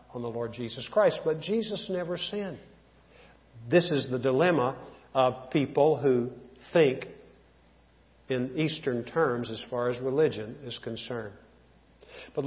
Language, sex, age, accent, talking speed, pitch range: English, male, 50-69, American, 130 wpm, 130-155 Hz